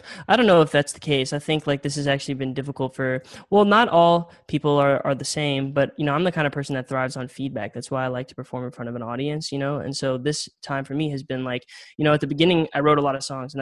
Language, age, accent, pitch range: English, 10-29, American, 130-145 Hz